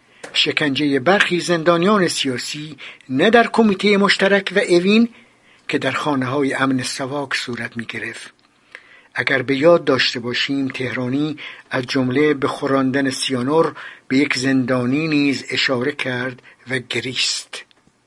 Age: 60-79